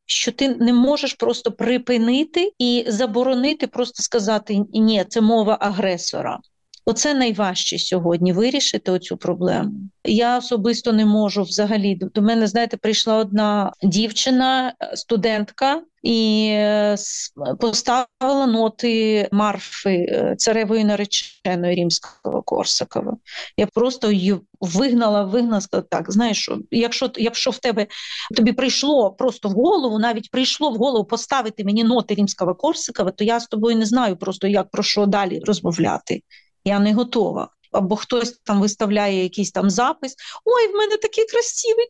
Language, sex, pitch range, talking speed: Ukrainian, female, 210-270 Hz, 135 wpm